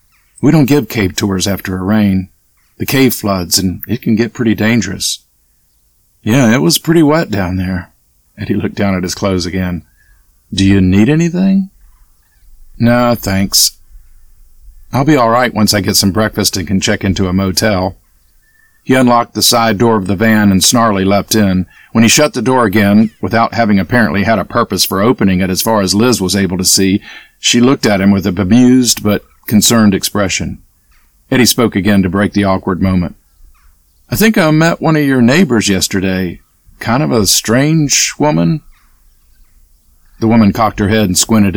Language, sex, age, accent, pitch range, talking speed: English, male, 50-69, American, 95-120 Hz, 185 wpm